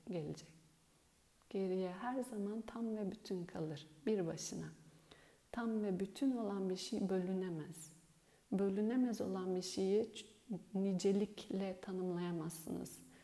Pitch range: 180-220 Hz